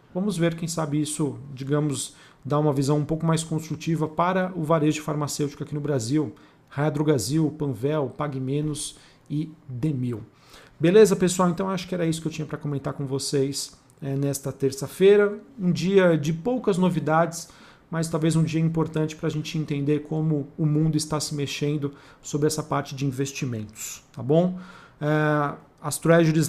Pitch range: 140-160 Hz